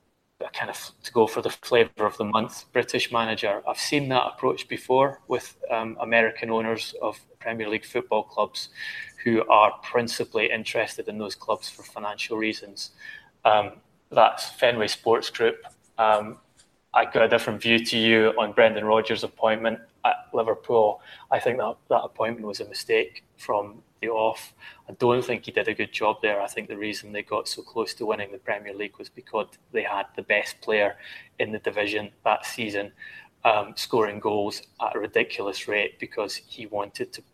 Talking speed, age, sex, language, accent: 175 wpm, 20-39, male, English, British